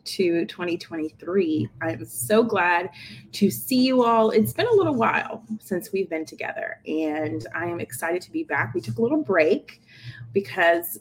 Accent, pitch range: American, 170-220 Hz